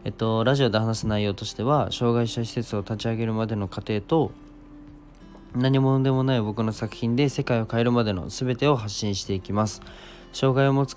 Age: 20-39